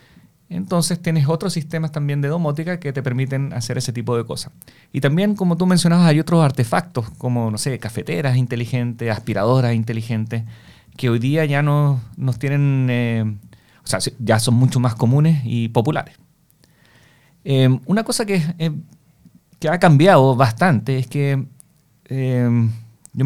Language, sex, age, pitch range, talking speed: Spanish, male, 30-49, 125-155 Hz, 155 wpm